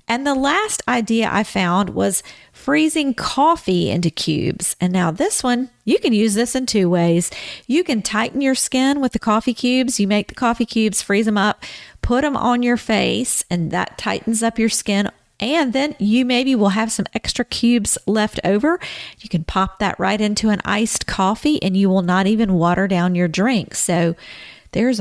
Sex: female